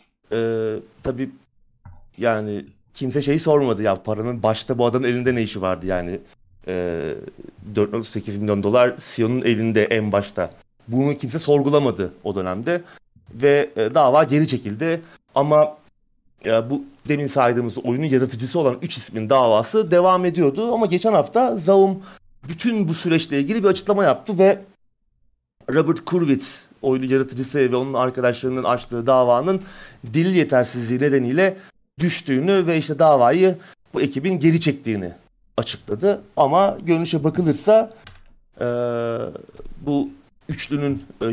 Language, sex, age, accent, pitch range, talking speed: Turkish, male, 30-49, native, 110-155 Hz, 125 wpm